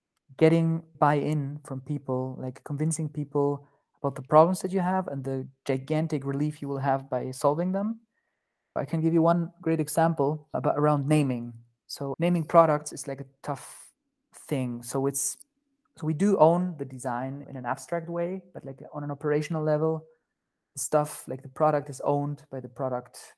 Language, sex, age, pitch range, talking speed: English, male, 30-49, 130-155 Hz, 175 wpm